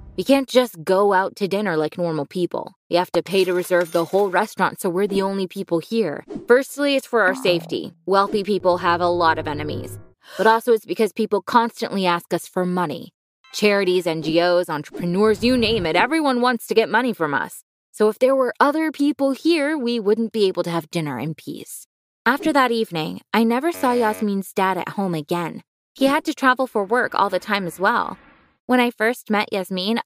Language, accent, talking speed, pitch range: English, American, 205 wpm, 180-250 Hz